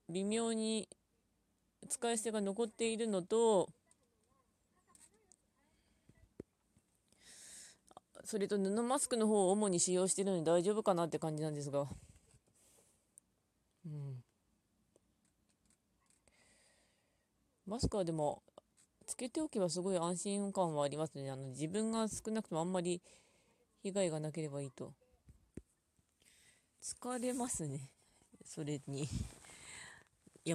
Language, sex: Japanese, female